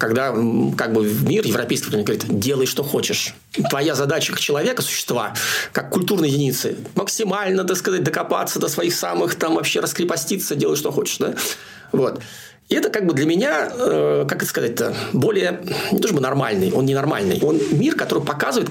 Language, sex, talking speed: Russian, male, 175 wpm